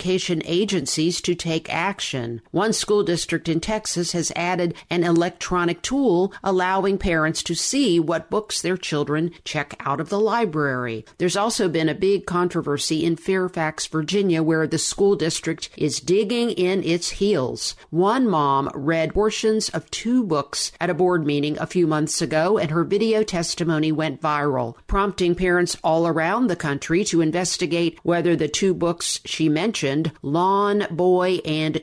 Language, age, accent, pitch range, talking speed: English, 50-69, American, 155-190 Hz, 155 wpm